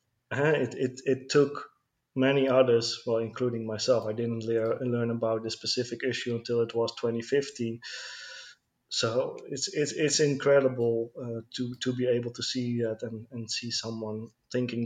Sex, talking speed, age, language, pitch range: male, 160 wpm, 20-39, English, 115-130 Hz